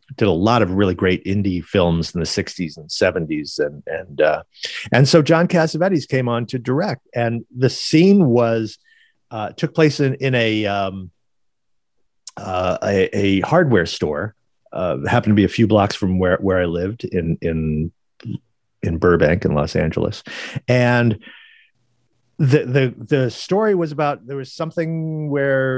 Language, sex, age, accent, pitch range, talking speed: English, male, 50-69, American, 100-145 Hz, 165 wpm